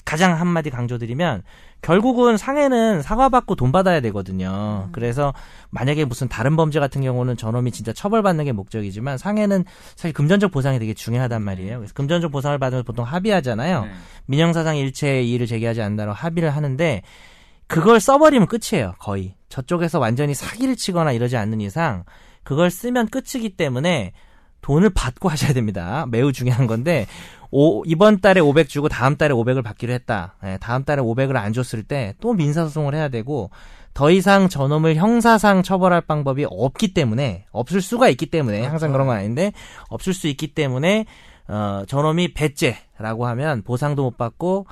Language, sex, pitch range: Korean, male, 120-175 Hz